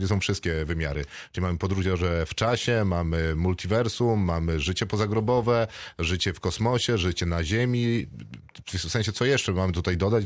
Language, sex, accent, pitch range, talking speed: Polish, male, native, 85-110 Hz, 165 wpm